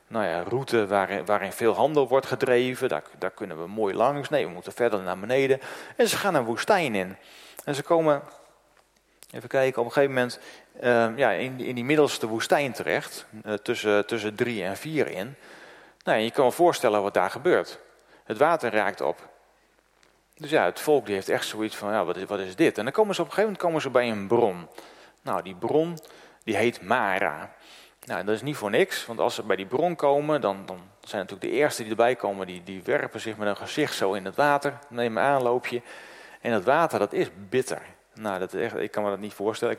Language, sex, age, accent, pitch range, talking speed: Dutch, male, 40-59, Dutch, 105-135 Hz, 230 wpm